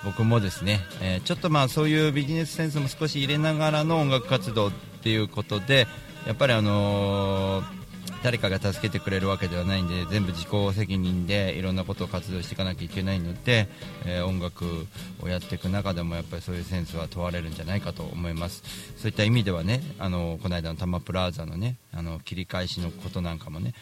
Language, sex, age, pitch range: Japanese, male, 40-59, 90-120 Hz